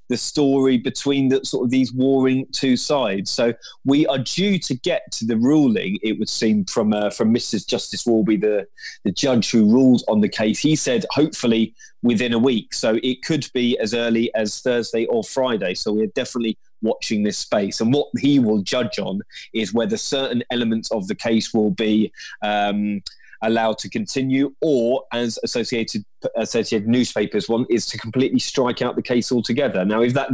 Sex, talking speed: male, 185 wpm